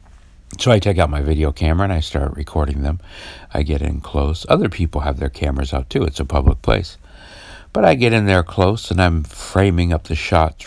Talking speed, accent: 220 wpm, American